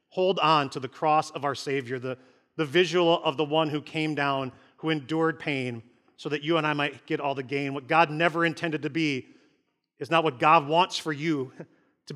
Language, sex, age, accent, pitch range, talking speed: English, male, 40-59, American, 140-175 Hz, 215 wpm